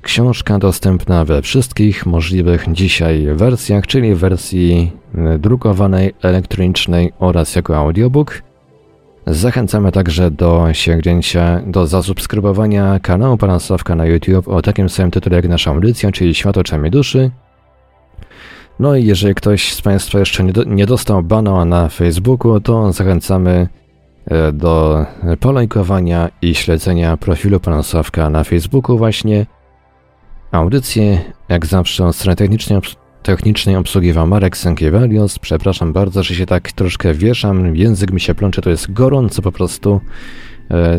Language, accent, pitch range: Polish, native, 85-105 Hz